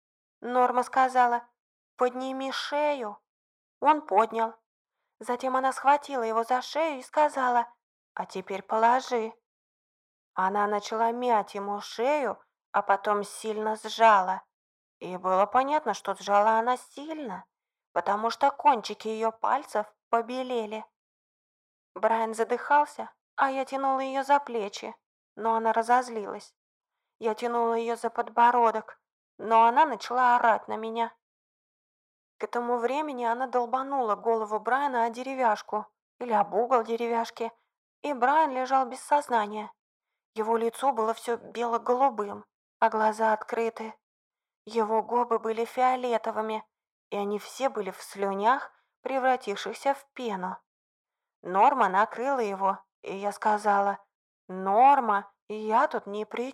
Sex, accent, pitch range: female, native, 215-255 Hz